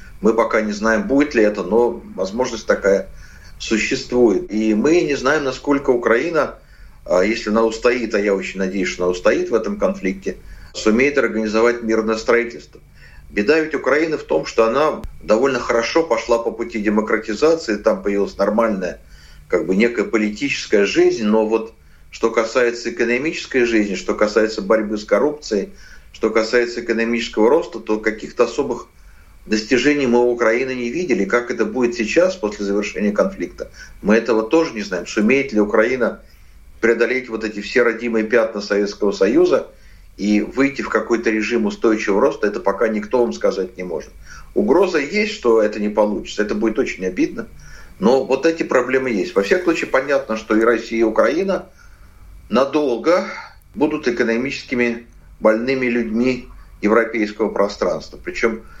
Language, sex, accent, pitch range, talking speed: Russian, male, native, 105-125 Hz, 150 wpm